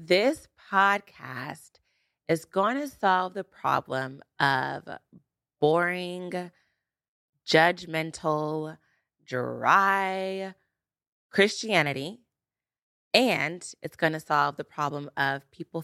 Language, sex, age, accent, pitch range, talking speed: English, female, 20-39, American, 140-165 Hz, 85 wpm